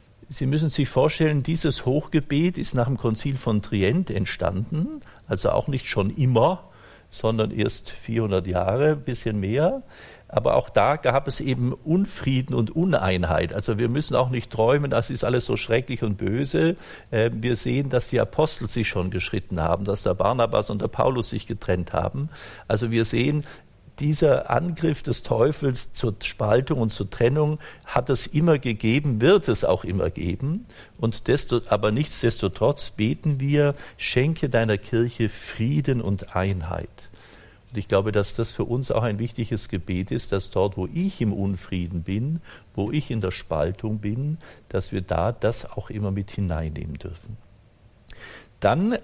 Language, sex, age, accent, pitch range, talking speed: German, male, 50-69, German, 100-135 Hz, 165 wpm